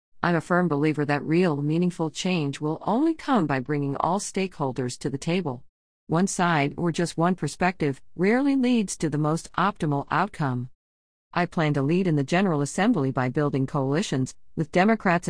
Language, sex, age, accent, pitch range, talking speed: English, female, 50-69, American, 145-190 Hz, 175 wpm